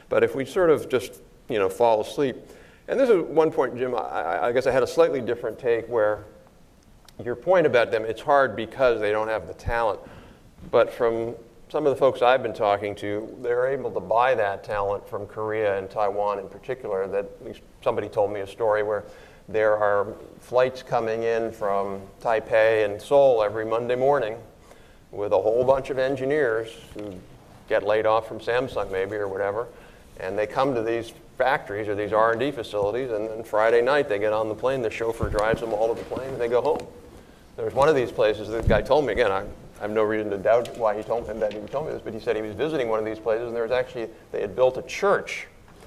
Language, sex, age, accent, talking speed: English, male, 50-69, American, 220 wpm